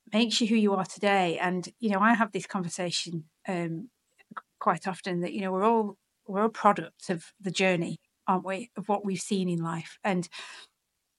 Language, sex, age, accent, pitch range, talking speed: English, female, 40-59, British, 175-210 Hz, 190 wpm